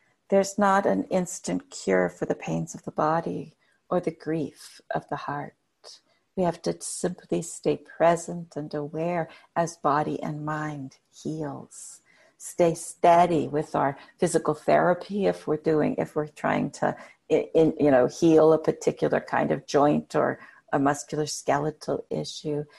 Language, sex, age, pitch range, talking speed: English, female, 60-79, 150-180 Hz, 150 wpm